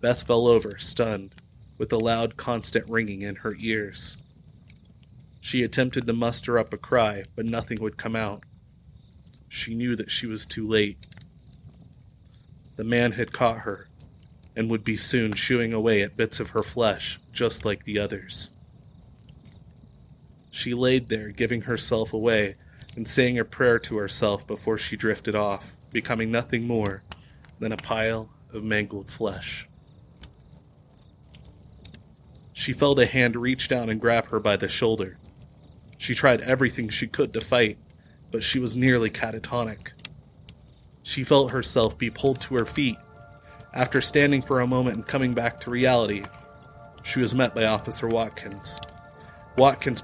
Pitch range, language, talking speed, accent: 110-125 Hz, English, 150 wpm, American